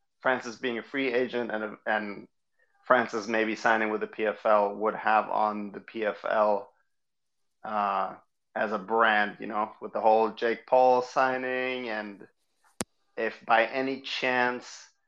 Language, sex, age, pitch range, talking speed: English, male, 30-49, 110-130 Hz, 140 wpm